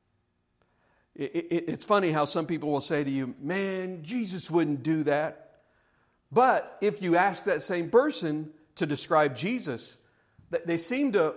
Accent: American